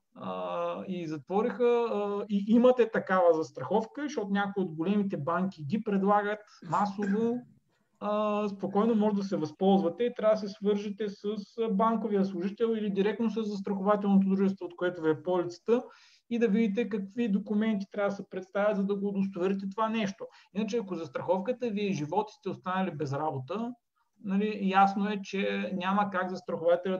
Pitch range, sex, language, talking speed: 175-215 Hz, male, Bulgarian, 155 wpm